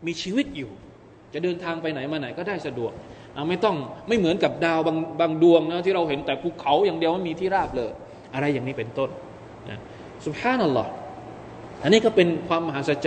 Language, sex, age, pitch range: Thai, male, 20-39, 150-195 Hz